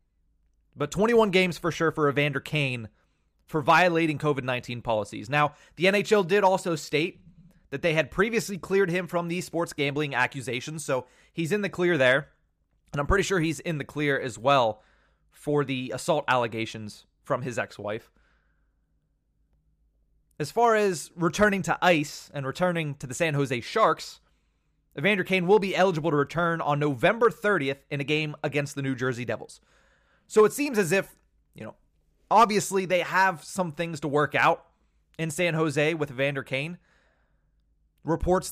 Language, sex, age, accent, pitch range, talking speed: English, male, 30-49, American, 135-175 Hz, 165 wpm